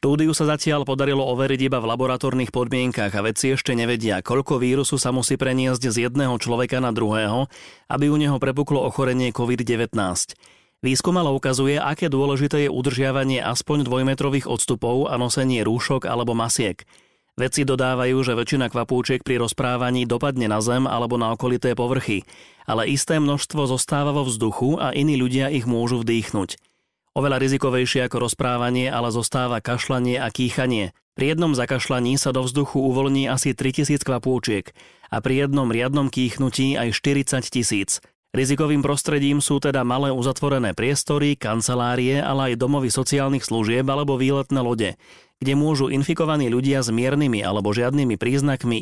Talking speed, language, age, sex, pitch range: 150 wpm, Slovak, 30-49, male, 120-140 Hz